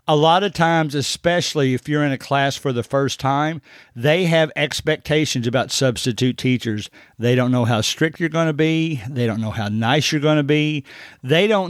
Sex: male